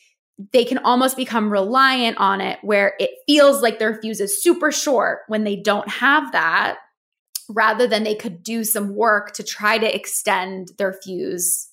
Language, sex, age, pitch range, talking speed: English, female, 20-39, 195-235 Hz, 175 wpm